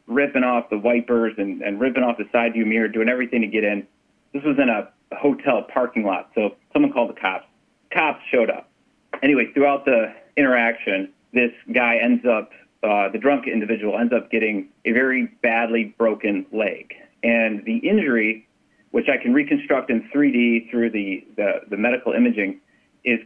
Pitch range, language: 110-145 Hz, English